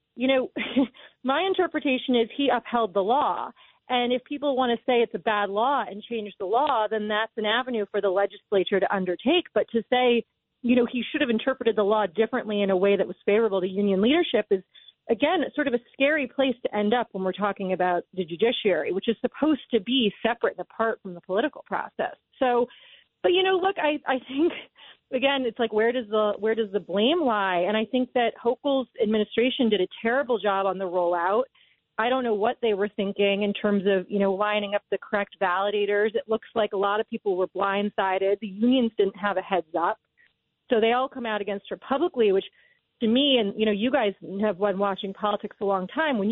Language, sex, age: English, female, 30-49